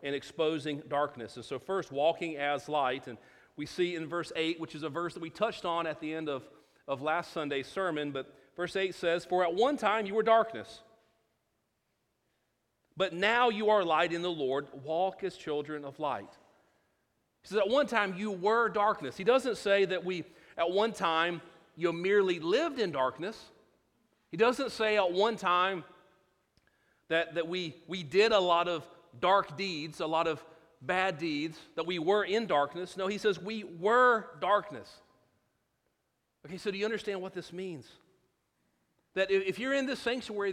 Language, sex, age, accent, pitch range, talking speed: English, male, 40-59, American, 165-215 Hz, 180 wpm